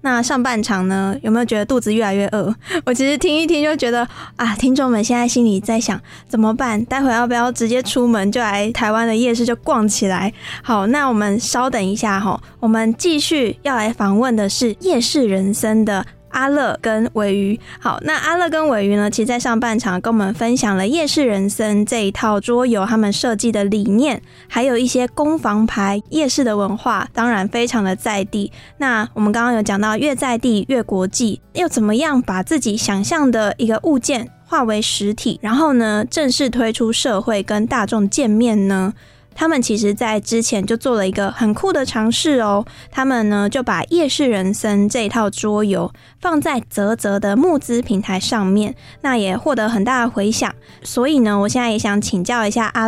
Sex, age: female, 20-39